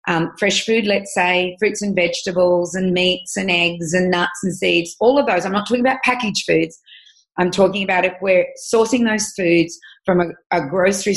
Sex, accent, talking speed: female, Australian, 200 wpm